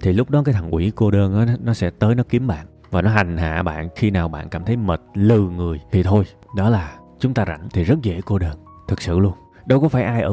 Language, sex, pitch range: Vietnamese, male, 95-130 Hz